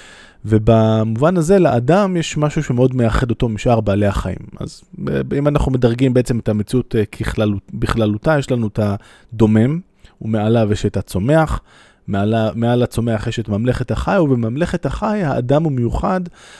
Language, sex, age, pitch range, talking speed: Hebrew, male, 20-39, 105-140 Hz, 145 wpm